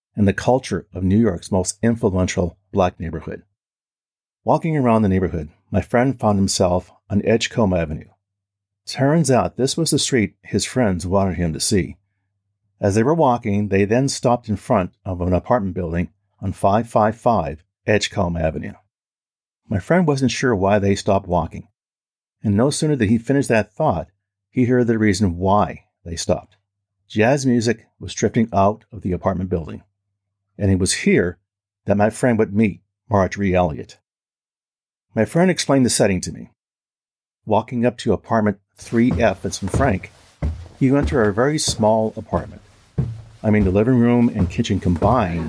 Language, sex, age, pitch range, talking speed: English, male, 50-69, 95-115 Hz, 160 wpm